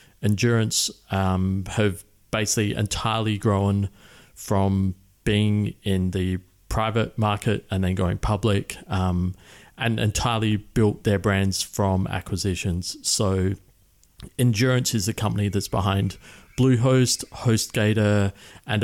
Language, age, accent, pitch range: English, 30-49, Australian, 95-110 Hz